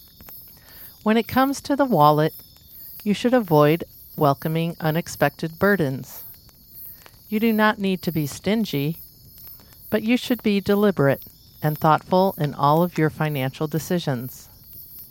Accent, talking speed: American, 125 wpm